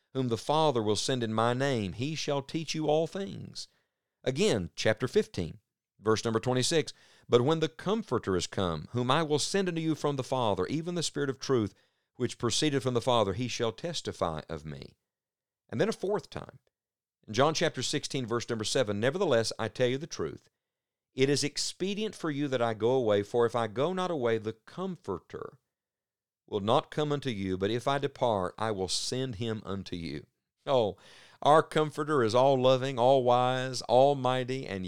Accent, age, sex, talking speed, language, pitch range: American, 50-69, male, 185 wpm, English, 110-145 Hz